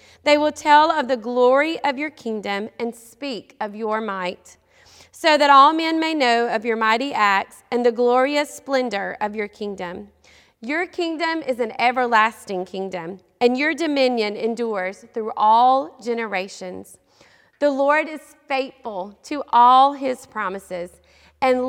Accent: American